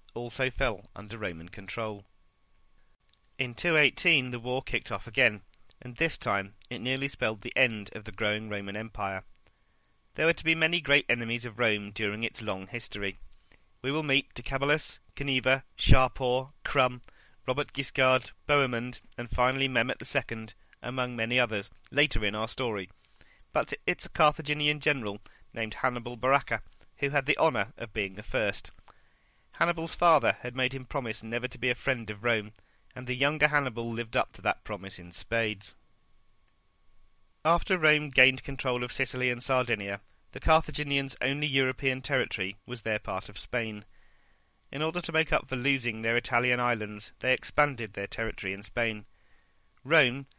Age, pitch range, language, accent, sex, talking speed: 40-59, 105-135 Hz, English, British, male, 160 wpm